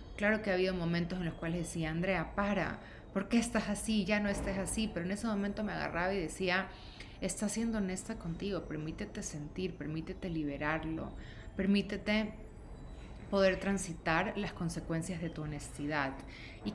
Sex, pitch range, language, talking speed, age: female, 155-195 Hz, Spanish, 160 wpm, 30-49